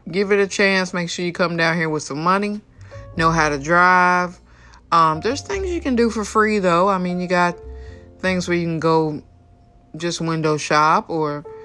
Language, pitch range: English, 155-200 Hz